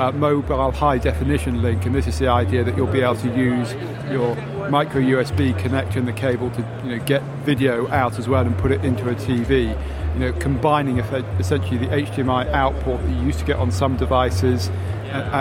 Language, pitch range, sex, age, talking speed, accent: English, 95-140 Hz, male, 40-59, 190 wpm, British